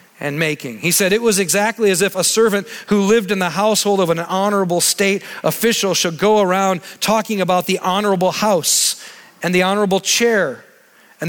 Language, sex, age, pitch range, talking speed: English, male, 40-59, 210-255 Hz, 180 wpm